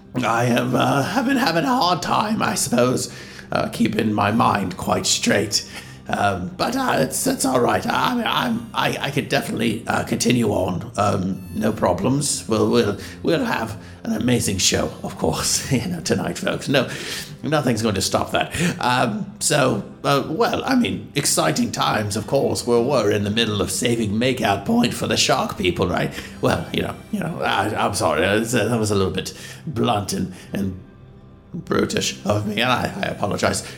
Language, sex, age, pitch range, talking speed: English, male, 50-69, 95-120 Hz, 180 wpm